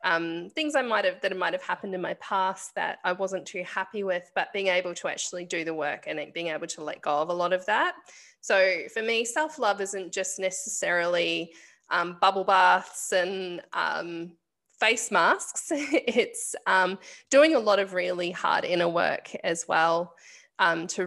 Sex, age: female, 20-39